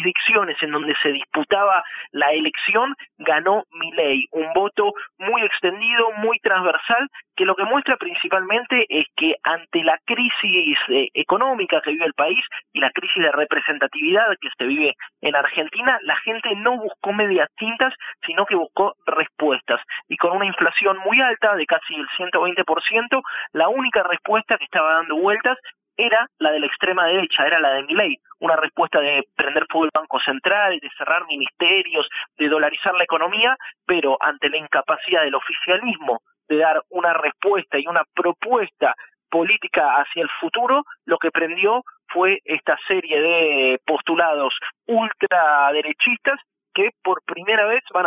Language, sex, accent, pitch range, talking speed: Spanish, male, Argentinian, 160-230 Hz, 155 wpm